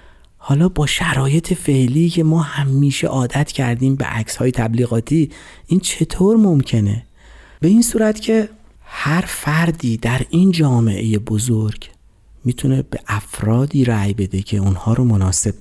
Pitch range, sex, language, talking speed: 100-145 Hz, male, Persian, 135 wpm